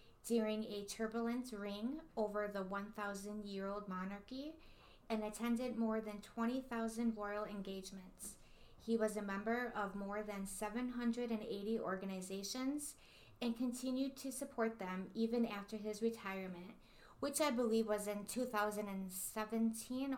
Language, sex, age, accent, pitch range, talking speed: English, female, 20-39, American, 195-225 Hz, 115 wpm